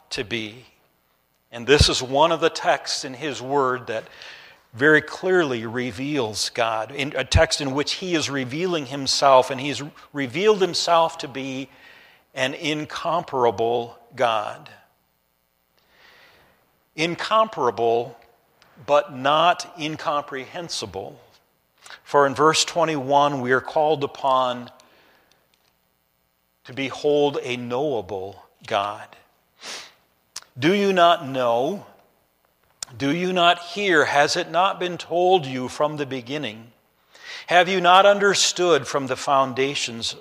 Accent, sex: American, male